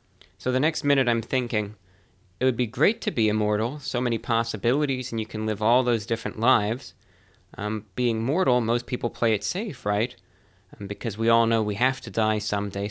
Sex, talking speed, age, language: male, 200 wpm, 20-39, English